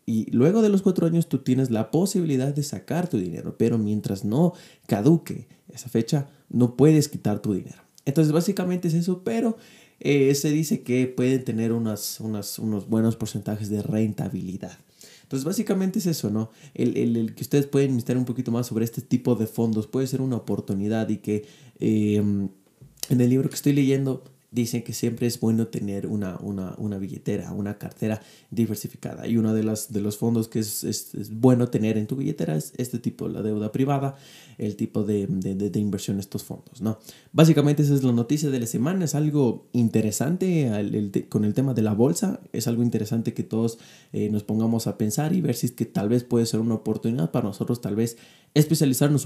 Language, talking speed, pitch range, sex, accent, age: Spanish, 200 wpm, 110-145 Hz, male, Mexican, 20-39